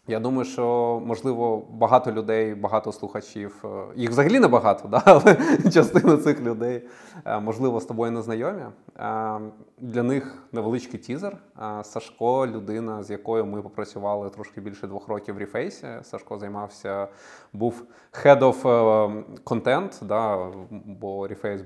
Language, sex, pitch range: Ukrainian, male, 105-125 Hz